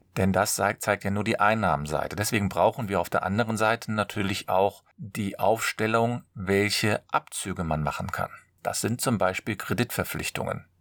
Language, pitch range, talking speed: German, 95-125 Hz, 160 wpm